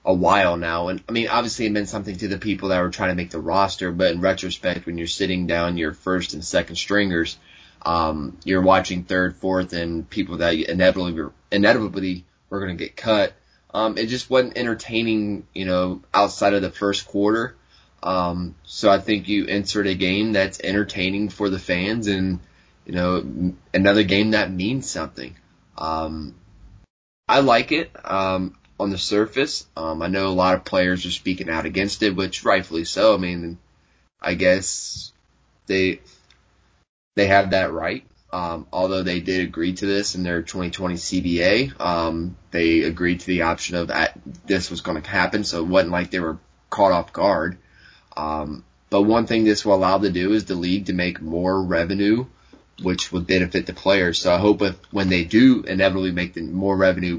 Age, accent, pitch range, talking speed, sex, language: 20-39, American, 85-100 Hz, 190 wpm, male, English